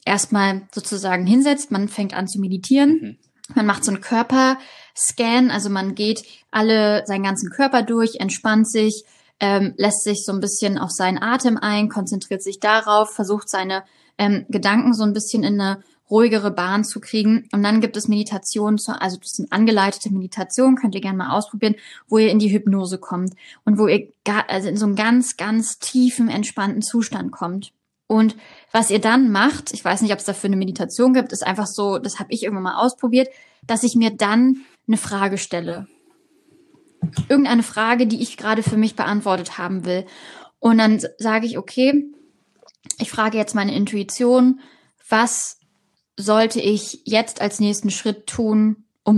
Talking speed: 175 wpm